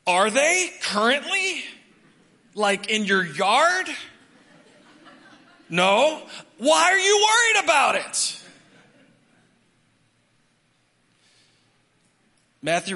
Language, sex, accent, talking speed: English, male, American, 70 wpm